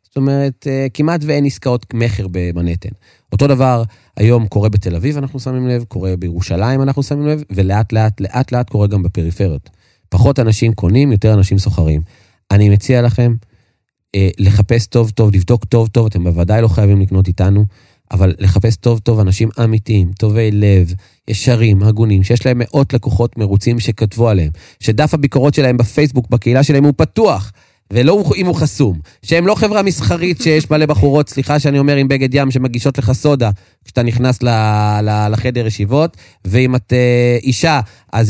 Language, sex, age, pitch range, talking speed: Hebrew, male, 30-49, 105-140 Hz, 155 wpm